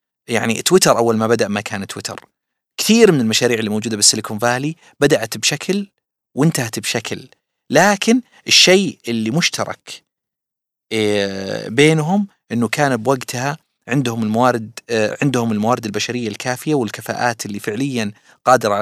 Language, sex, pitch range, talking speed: Arabic, male, 110-155 Hz, 125 wpm